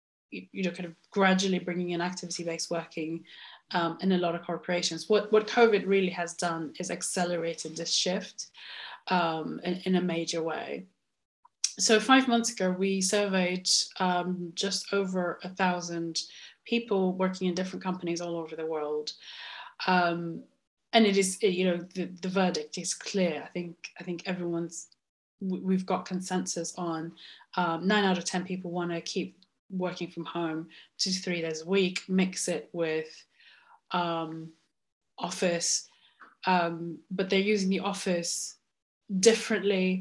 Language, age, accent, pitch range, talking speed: English, 20-39, British, 170-190 Hz, 155 wpm